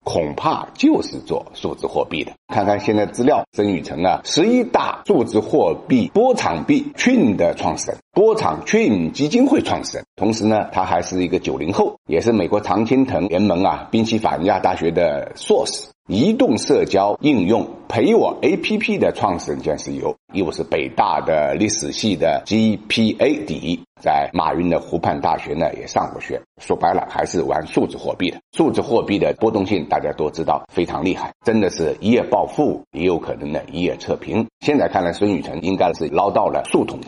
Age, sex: 50-69, male